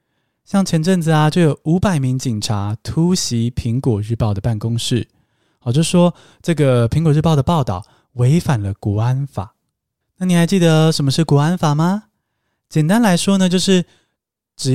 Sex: male